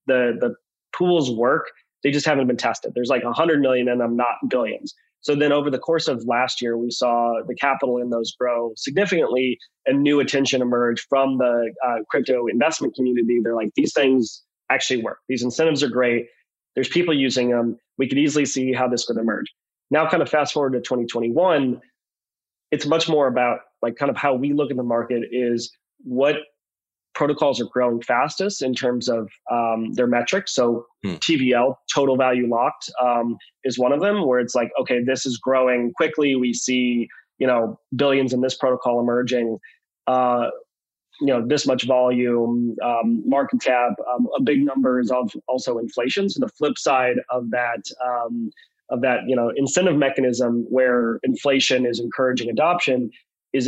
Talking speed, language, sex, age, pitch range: 180 wpm, English, male, 20-39, 120-140 Hz